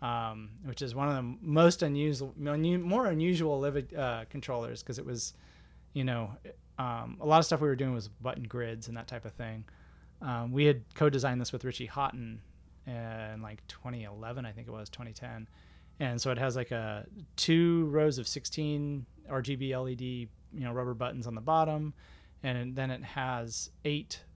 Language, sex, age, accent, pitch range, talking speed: English, male, 30-49, American, 110-135 Hz, 180 wpm